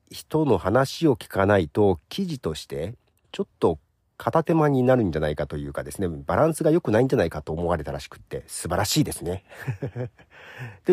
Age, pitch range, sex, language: 40-59, 85-135 Hz, male, Japanese